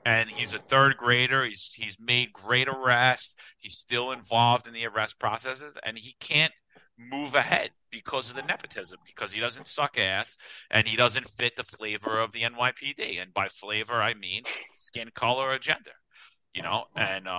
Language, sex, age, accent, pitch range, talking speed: English, male, 40-59, American, 110-140 Hz, 180 wpm